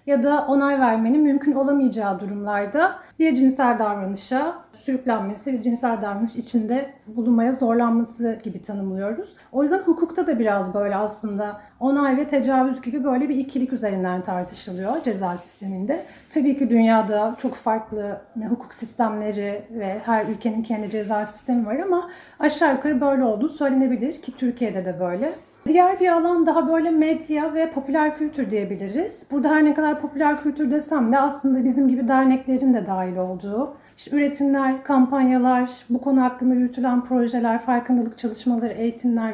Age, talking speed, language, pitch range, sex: 40-59, 150 wpm, Turkish, 210-275 Hz, female